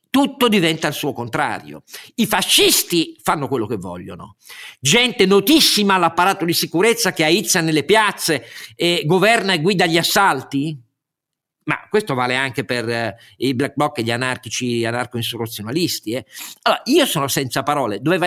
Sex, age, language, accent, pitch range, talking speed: male, 50-69, Italian, native, 135-185 Hz, 155 wpm